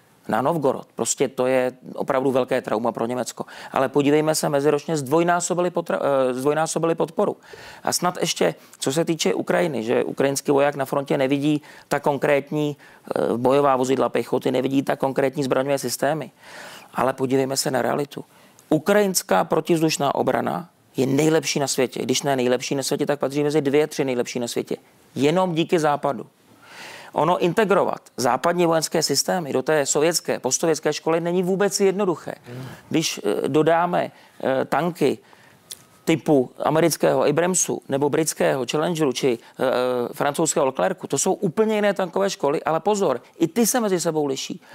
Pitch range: 135-175 Hz